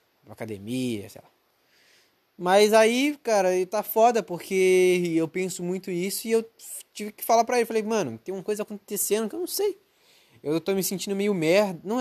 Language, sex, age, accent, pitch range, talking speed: Portuguese, male, 20-39, Brazilian, 140-200 Hz, 185 wpm